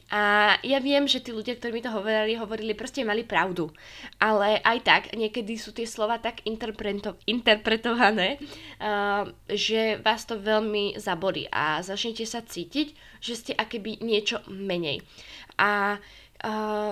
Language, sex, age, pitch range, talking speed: Slovak, female, 20-39, 195-230 Hz, 145 wpm